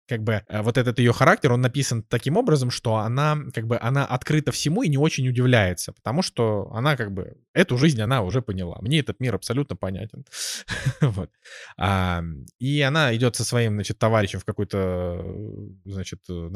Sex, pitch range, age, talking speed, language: male, 105-140 Hz, 20-39, 165 wpm, Russian